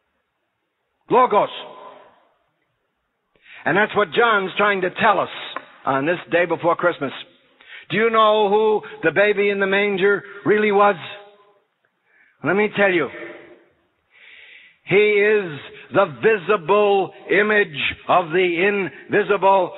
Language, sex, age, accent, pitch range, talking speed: English, male, 60-79, American, 135-200 Hz, 110 wpm